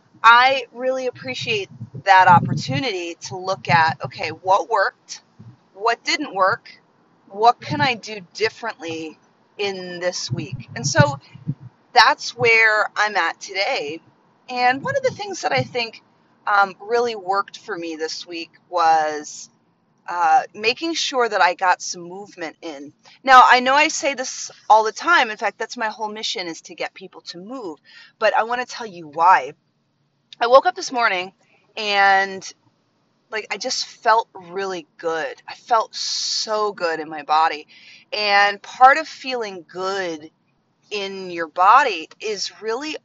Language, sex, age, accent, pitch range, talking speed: English, female, 30-49, American, 170-245 Hz, 155 wpm